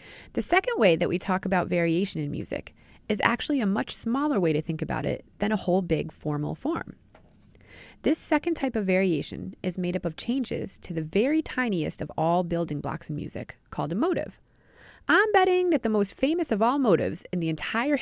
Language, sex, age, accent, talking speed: English, female, 20-39, American, 205 wpm